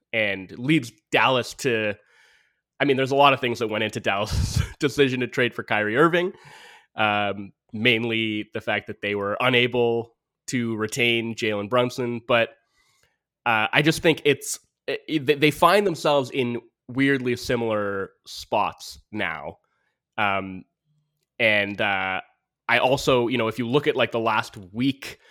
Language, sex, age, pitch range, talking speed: English, male, 20-39, 110-140 Hz, 145 wpm